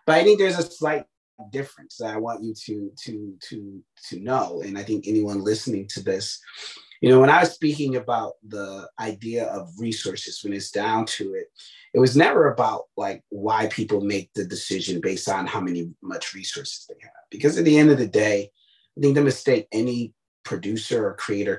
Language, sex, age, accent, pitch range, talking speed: English, male, 30-49, American, 105-150 Hz, 200 wpm